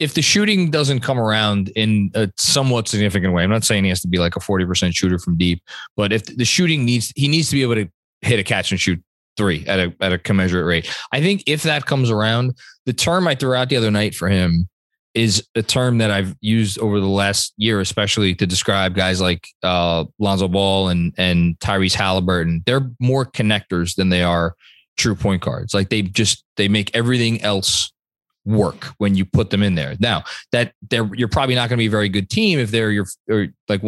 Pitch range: 95-125 Hz